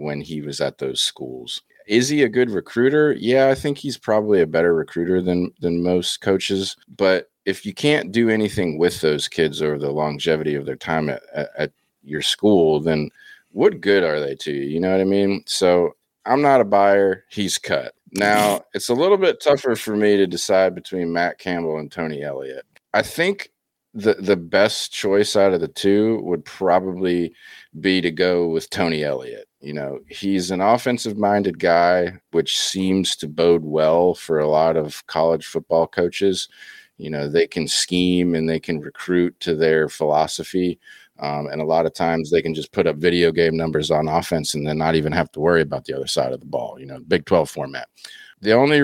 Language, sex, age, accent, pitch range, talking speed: English, male, 40-59, American, 80-105 Hz, 200 wpm